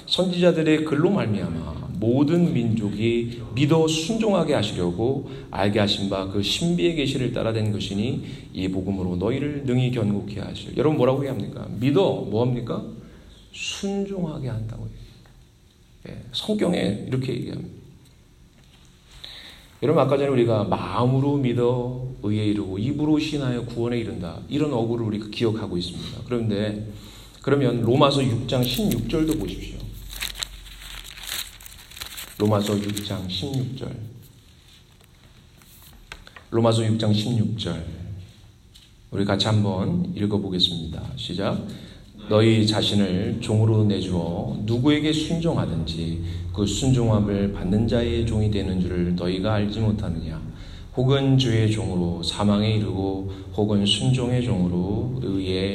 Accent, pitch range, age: Korean, 95-130 Hz, 40-59